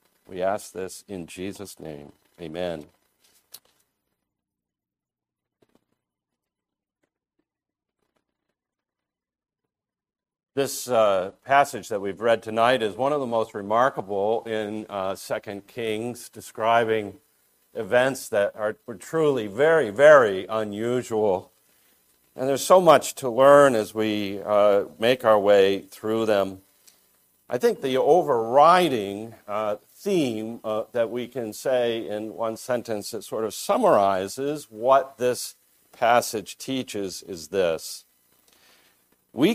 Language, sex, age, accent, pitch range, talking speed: English, male, 50-69, American, 100-140 Hz, 110 wpm